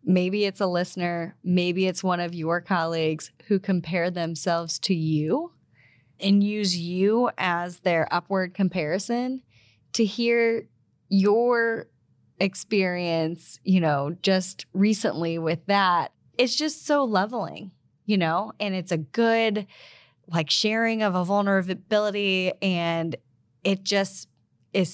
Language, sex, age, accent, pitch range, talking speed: English, female, 10-29, American, 160-200 Hz, 125 wpm